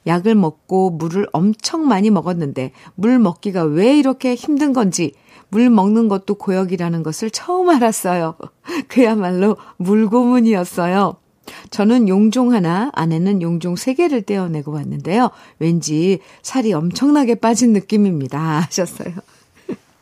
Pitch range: 170-230 Hz